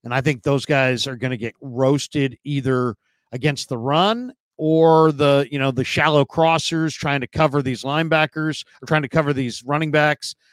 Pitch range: 125-155 Hz